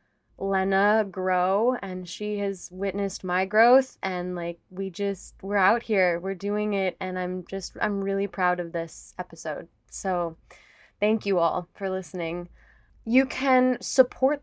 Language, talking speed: English, 150 wpm